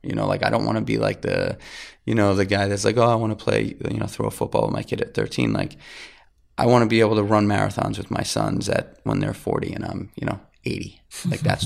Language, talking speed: English, 280 wpm